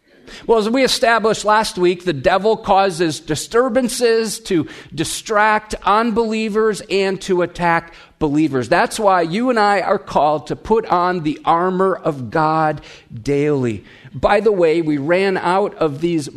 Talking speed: 145 wpm